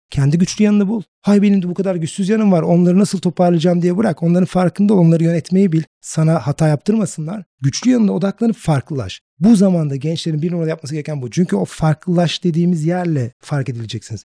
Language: Turkish